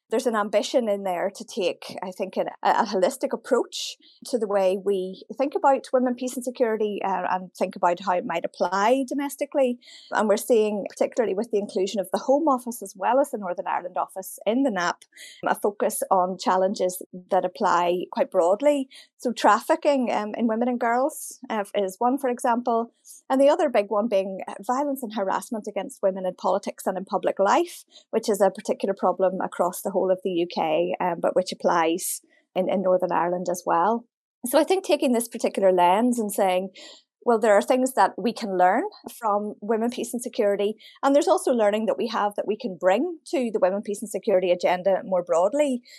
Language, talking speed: English, 200 wpm